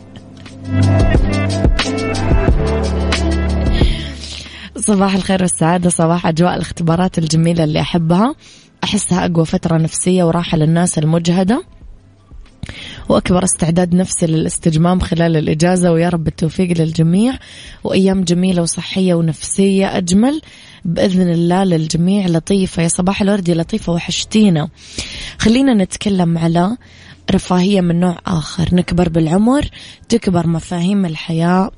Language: English